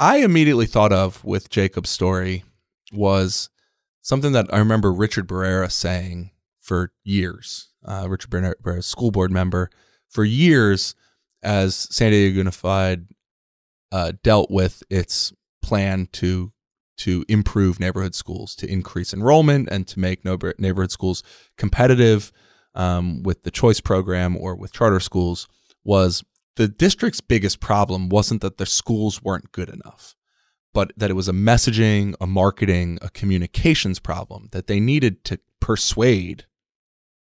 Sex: male